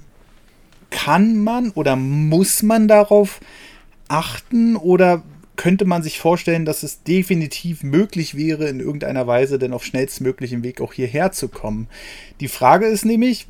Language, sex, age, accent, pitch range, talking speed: German, male, 30-49, German, 140-185 Hz, 140 wpm